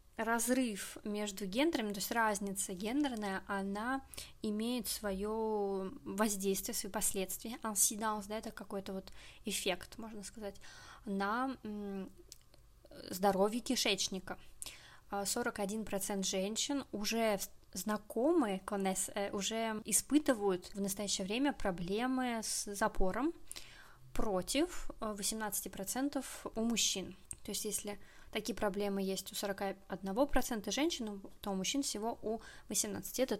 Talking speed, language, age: 95 wpm, Russian, 20-39